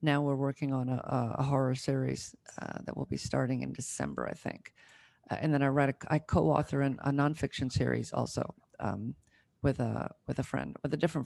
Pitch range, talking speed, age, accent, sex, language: 135-155 Hz, 210 wpm, 50-69, American, female, English